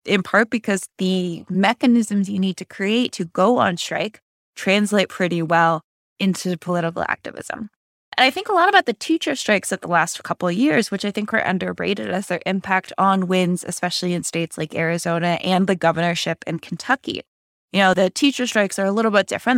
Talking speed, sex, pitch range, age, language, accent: 195 wpm, female, 170-215 Hz, 20-39, English, American